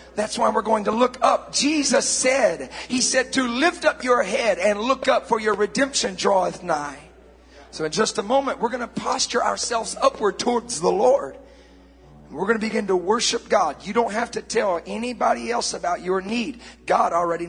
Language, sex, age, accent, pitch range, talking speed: English, male, 40-59, American, 180-240 Hz, 195 wpm